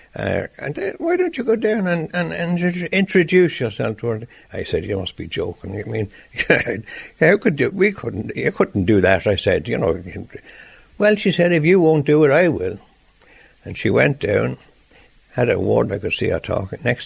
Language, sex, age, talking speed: English, male, 60-79, 210 wpm